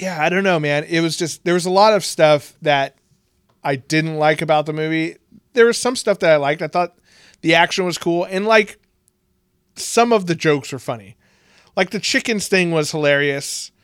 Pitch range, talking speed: 130-165 Hz, 210 wpm